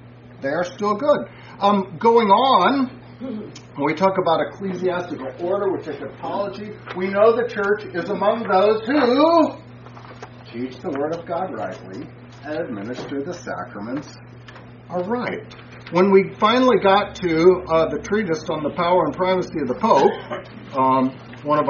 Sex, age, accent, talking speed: male, 50-69, American, 150 wpm